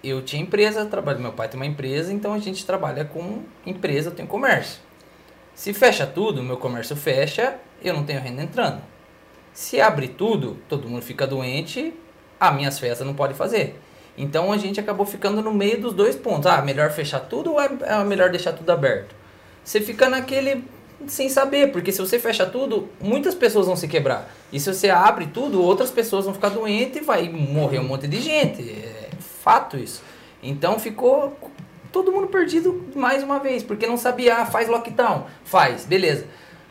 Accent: Brazilian